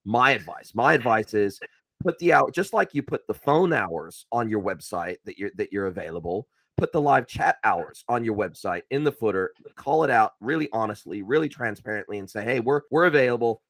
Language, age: English, 30-49